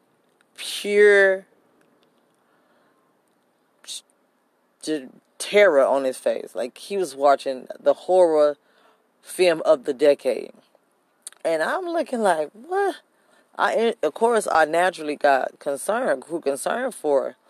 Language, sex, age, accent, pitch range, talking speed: English, female, 20-39, American, 140-205 Hz, 105 wpm